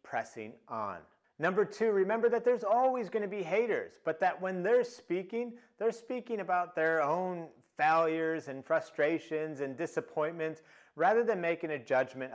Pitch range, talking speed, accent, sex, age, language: 145-200 Hz, 155 wpm, American, male, 30-49, English